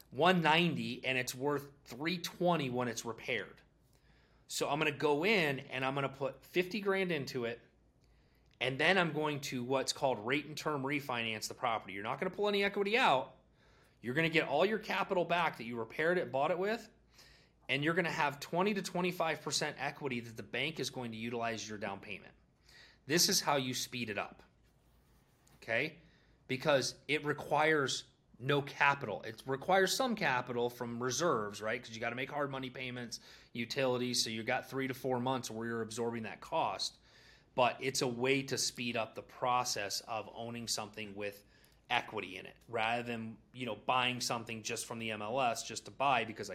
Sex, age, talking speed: male, 30-49, 190 wpm